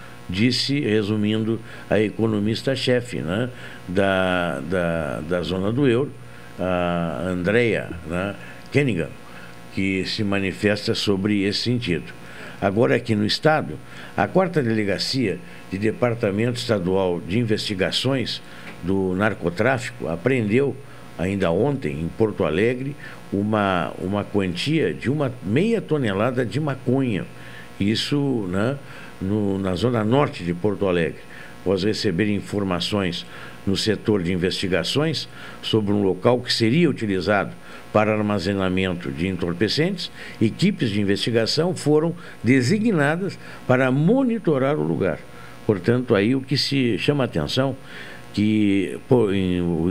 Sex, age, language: male, 60-79, Portuguese